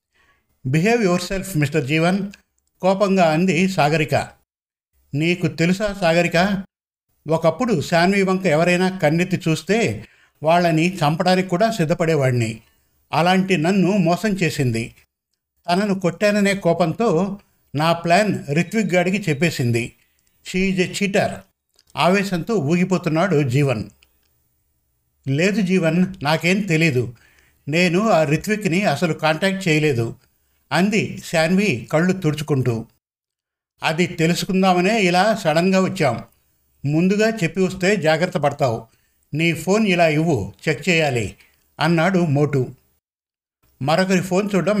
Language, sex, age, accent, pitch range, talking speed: Telugu, male, 50-69, native, 145-185 Hz, 100 wpm